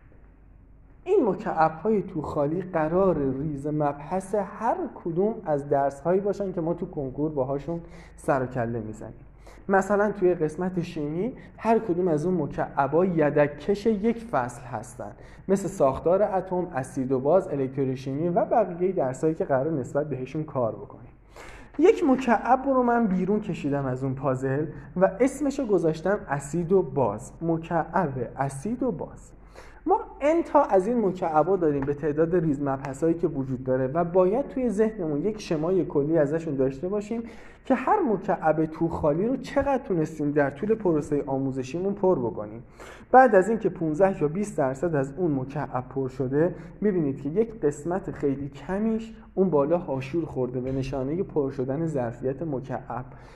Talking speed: 155 wpm